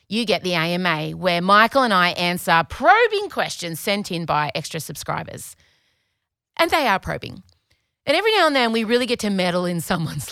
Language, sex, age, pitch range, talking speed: English, female, 30-49, 160-245 Hz, 185 wpm